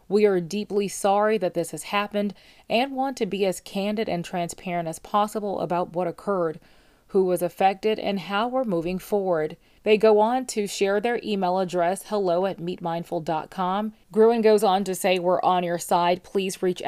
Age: 30-49